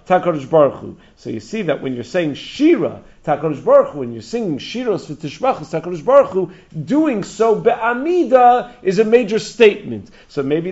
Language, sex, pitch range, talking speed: English, male, 155-215 Hz, 130 wpm